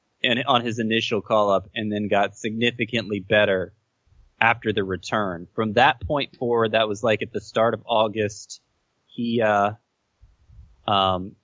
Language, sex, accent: English, male, American